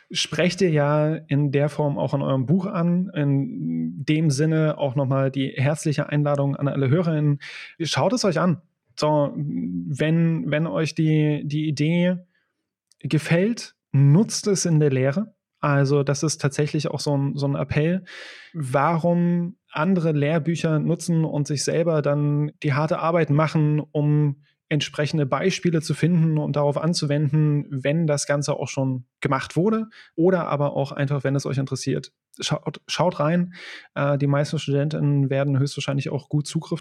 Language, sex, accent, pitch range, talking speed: German, male, German, 140-165 Hz, 155 wpm